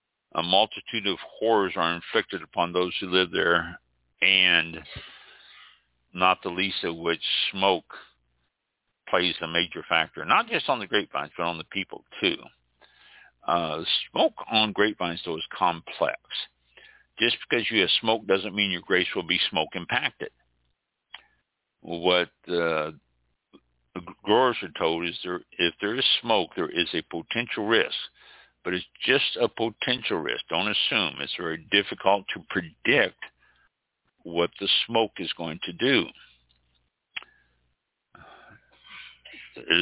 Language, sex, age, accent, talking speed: English, male, 60-79, American, 135 wpm